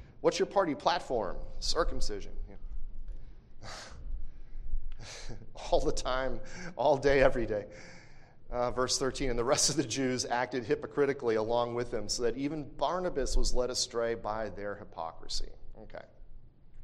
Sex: male